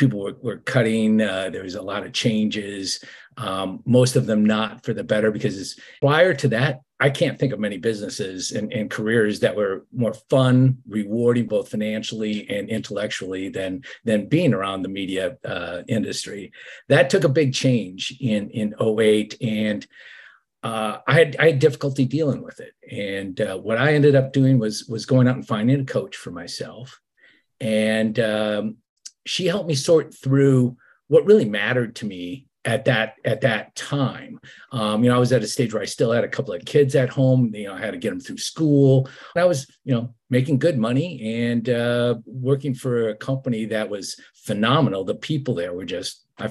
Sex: male